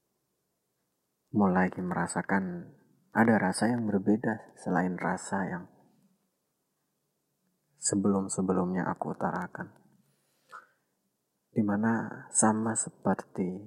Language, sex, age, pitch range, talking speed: Indonesian, male, 30-49, 95-115 Hz, 65 wpm